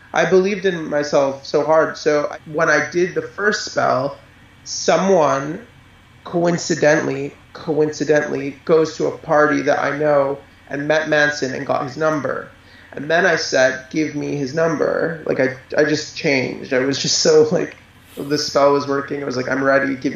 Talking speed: 175 wpm